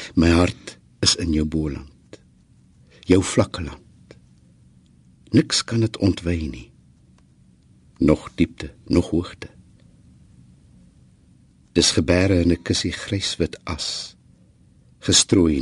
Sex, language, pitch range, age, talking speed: male, English, 65-90 Hz, 60-79, 100 wpm